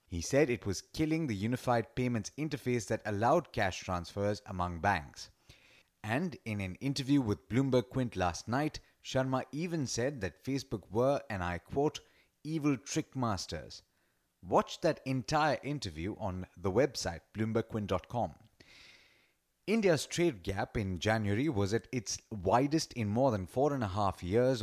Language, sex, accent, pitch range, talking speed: English, male, Indian, 100-135 Hz, 150 wpm